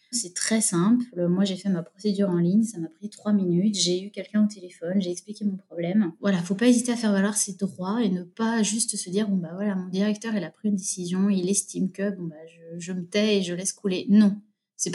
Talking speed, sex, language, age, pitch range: 255 wpm, female, French, 20-39, 180-220 Hz